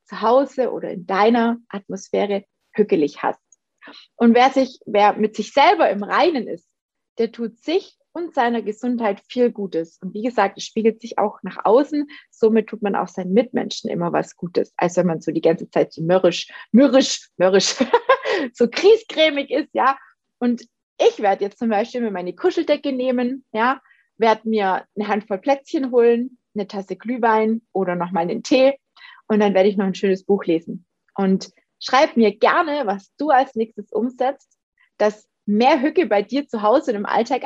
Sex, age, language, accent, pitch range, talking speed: female, 30-49, German, German, 200-260 Hz, 180 wpm